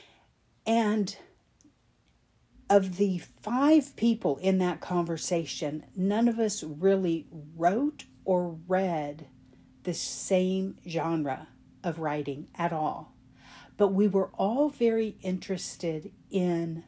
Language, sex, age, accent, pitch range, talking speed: English, female, 50-69, American, 155-190 Hz, 105 wpm